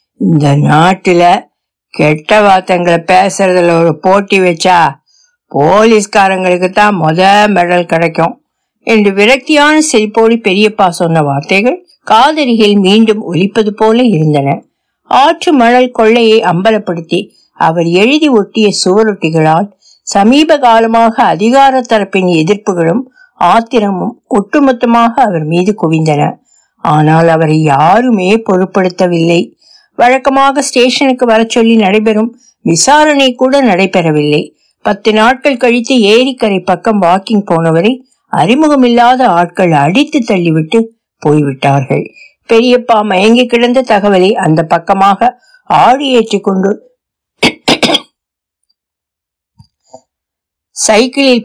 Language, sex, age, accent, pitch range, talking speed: Tamil, female, 60-79, native, 180-240 Hz, 80 wpm